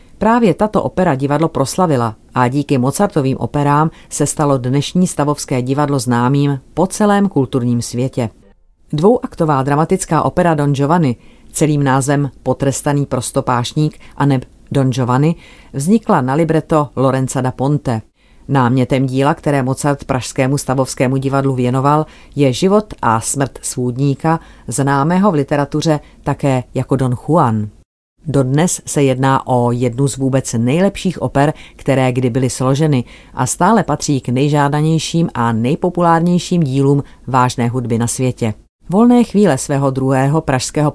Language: Czech